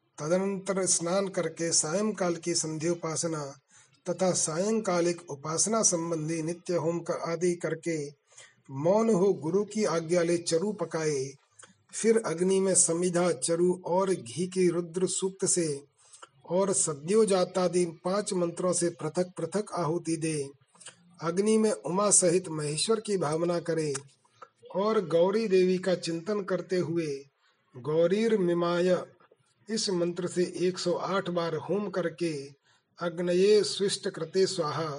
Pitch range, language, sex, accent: 165-190 Hz, Hindi, male, native